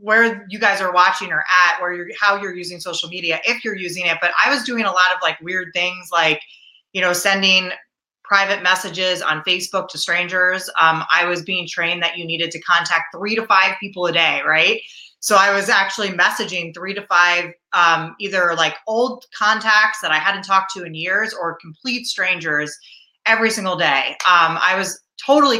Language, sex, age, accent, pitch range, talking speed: English, female, 20-39, American, 165-200 Hz, 200 wpm